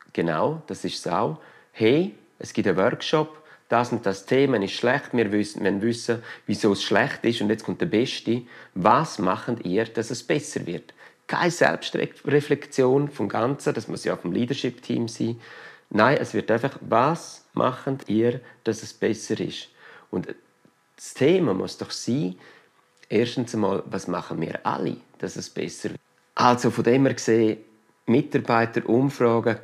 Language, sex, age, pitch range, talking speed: German, male, 40-59, 105-135 Hz, 160 wpm